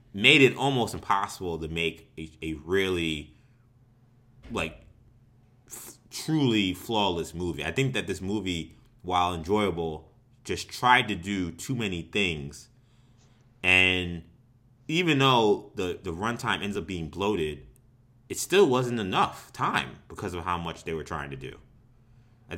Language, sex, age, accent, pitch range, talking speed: English, male, 30-49, American, 85-120 Hz, 140 wpm